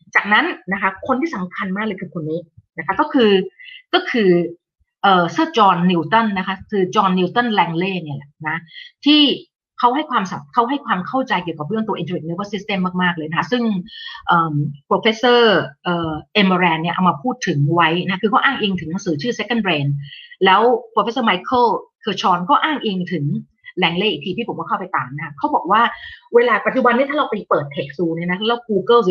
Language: Thai